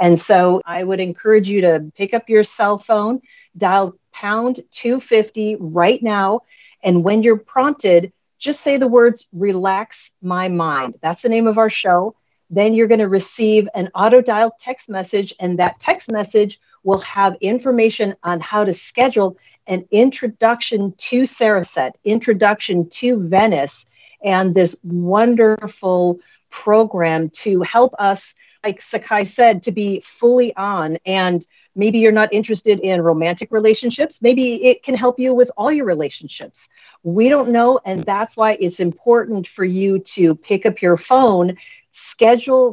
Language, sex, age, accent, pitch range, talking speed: English, female, 40-59, American, 185-230 Hz, 155 wpm